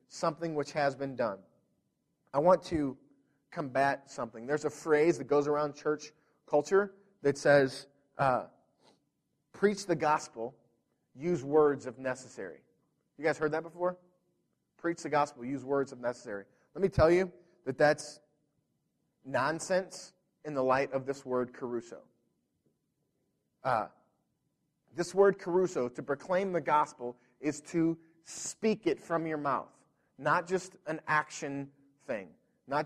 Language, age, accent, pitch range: English, 30-49, American, 130-160 Hz